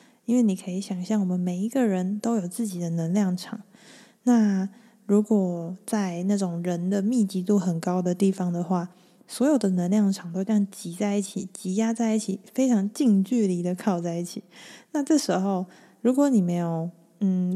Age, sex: 20-39, female